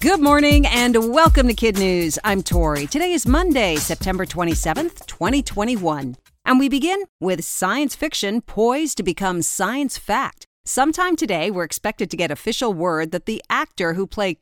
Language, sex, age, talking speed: English, female, 50-69, 160 wpm